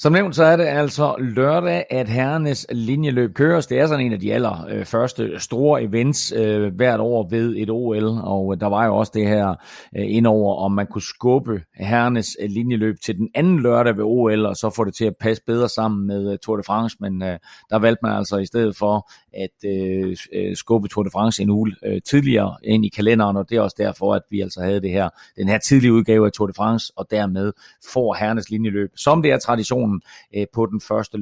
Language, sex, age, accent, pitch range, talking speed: Danish, male, 30-49, native, 105-125 Hz, 220 wpm